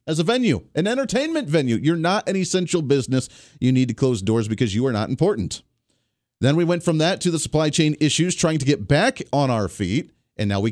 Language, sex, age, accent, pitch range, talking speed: English, male, 40-59, American, 120-165 Hz, 230 wpm